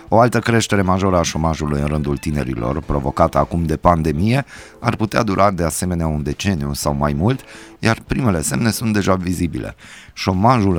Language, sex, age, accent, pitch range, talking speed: Romanian, male, 30-49, native, 75-100 Hz, 165 wpm